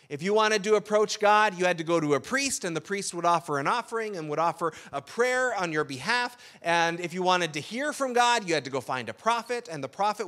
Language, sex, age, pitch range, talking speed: English, male, 30-49, 160-215 Hz, 270 wpm